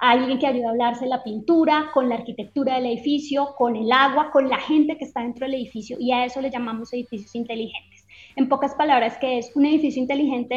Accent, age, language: Colombian, 20-39, Spanish